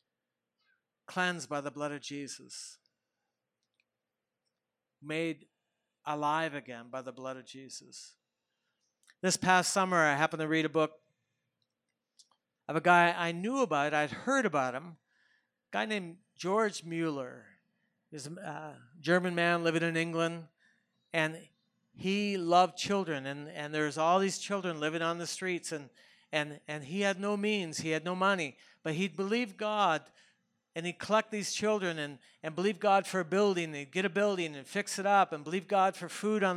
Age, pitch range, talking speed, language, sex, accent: 60-79, 160-195 Hz, 165 wpm, English, male, American